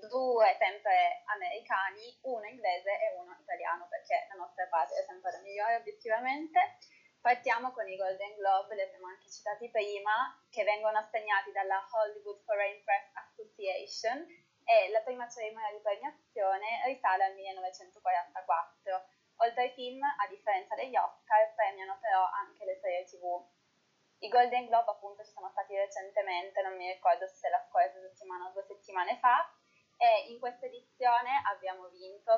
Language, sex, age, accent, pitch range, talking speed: Italian, female, 20-39, native, 195-250 Hz, 150 wpm